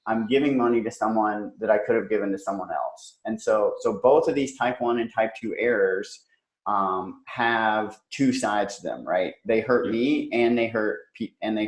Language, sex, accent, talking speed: English, male, American, 205 wpm